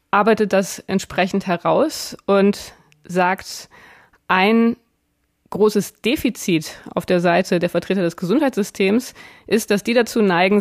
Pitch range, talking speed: 180-215 Hz, 120 wpm